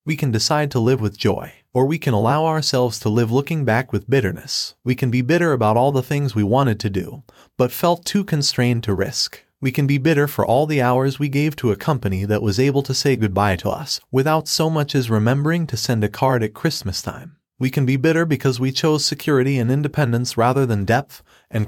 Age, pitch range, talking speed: 30-49, 115-145 Hz, 230 wpm